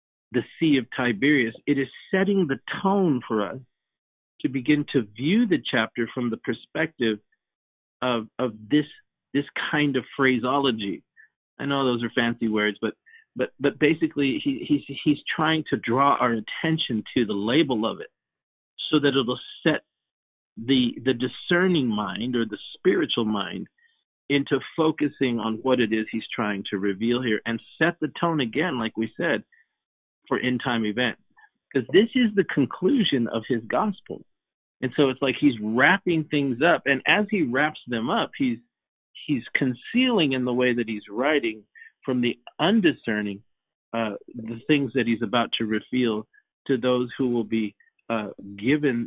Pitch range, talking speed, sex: 115-155 Hz, 165 wpm, male